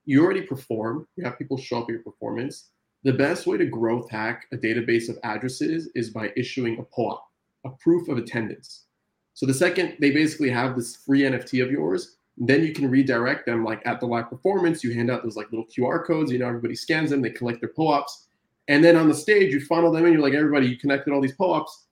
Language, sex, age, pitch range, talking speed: English, male, 20-39, 115-145 Hz, 235 wpm